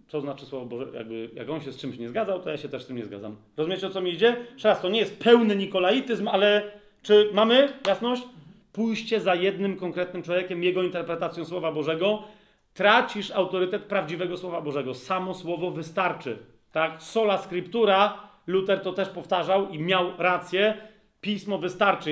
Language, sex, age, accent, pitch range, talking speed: Polish, male, 40-59, native, 170-210 Hz, 170 wpm